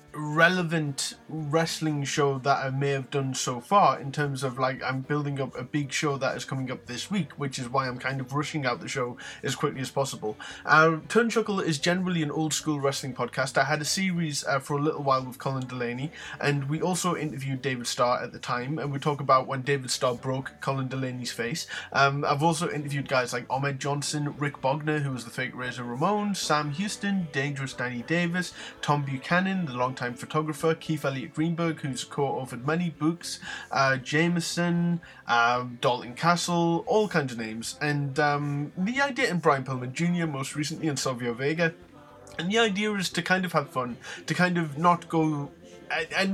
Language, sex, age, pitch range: English, male, 20-39, 130-165 Hz